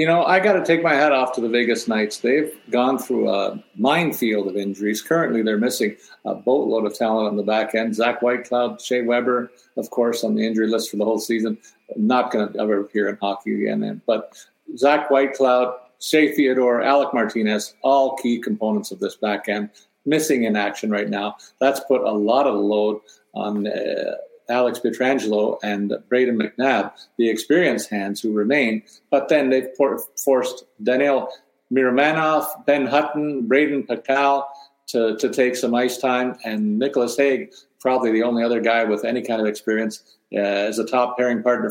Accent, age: American, 50-69